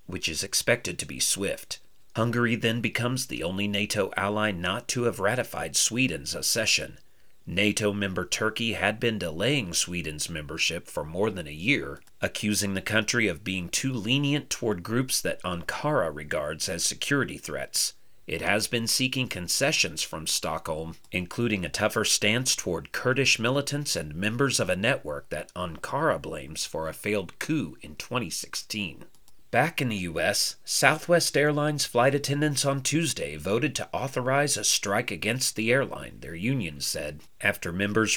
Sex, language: male, English